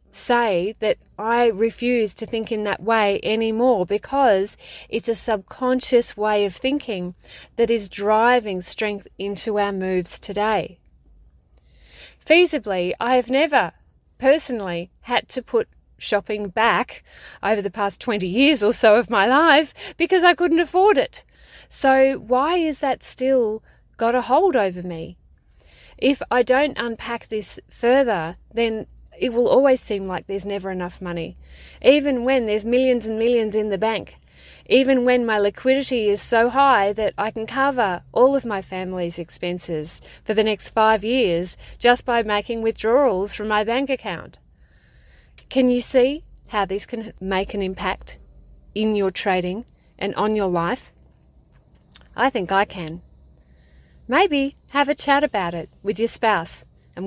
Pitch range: 190-250 Hz